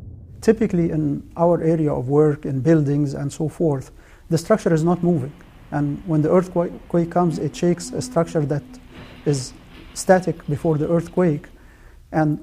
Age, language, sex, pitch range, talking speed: 40-59, English, male, 140-165 Hz, 155 wpm